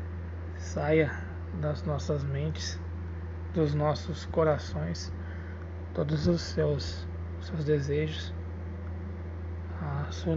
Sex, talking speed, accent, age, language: male, 80 wpm, Brazilian, 20-39, Portuguese